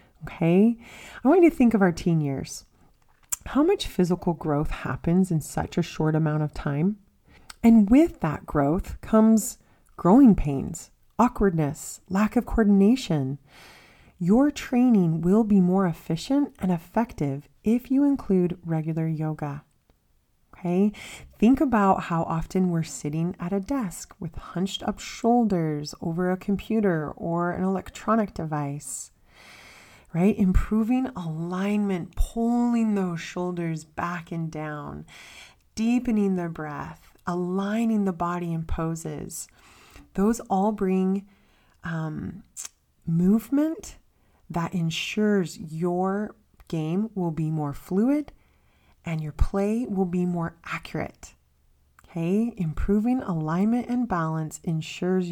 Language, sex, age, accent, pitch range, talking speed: English, female, 30-49, American, 160-215 Hz, 120 wpm